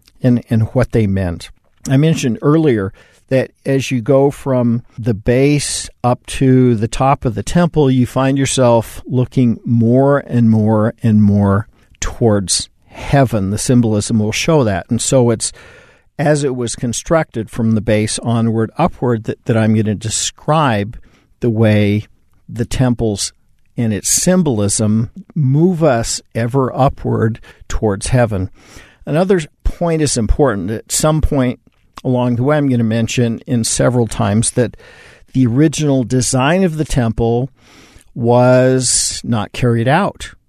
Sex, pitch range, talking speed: male, 110-135 Hz, 145 wpm